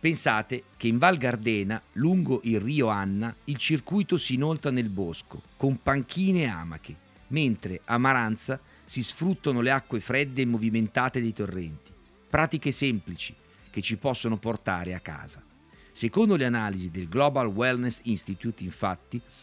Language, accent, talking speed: Italian, native, 145 wpm